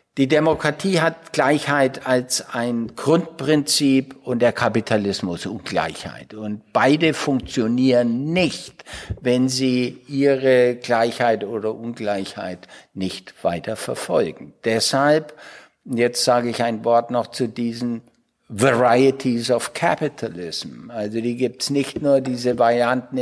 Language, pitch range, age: German, 120-140 Hz, 60-79